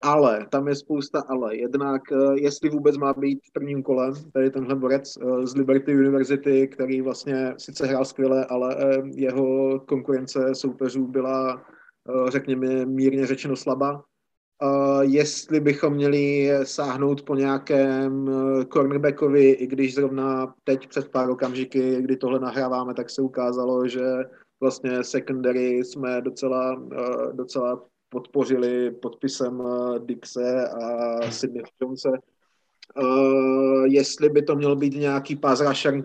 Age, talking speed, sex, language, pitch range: 20-39, 120 wpm, male, Slovak, 130-140 Hz